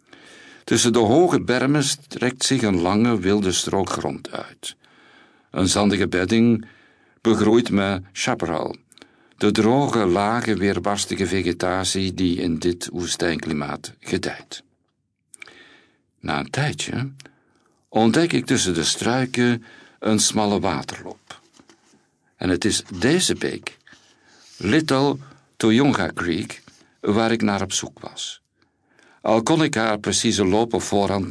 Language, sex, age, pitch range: Dutch, male, 60-79, 95-120 Hz